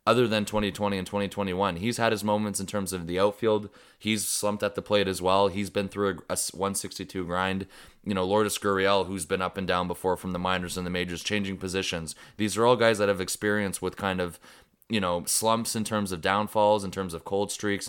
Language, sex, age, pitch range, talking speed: English, male, 20-39, 90-105 Hz, 230 wpm